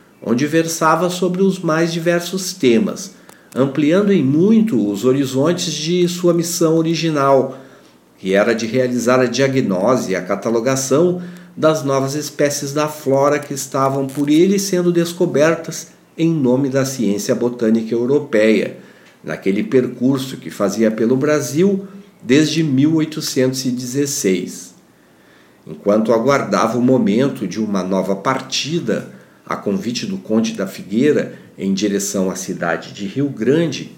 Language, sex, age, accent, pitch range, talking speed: Portuguese, male, 50-69, Brazilian, 125-165 Hz, 125 wpm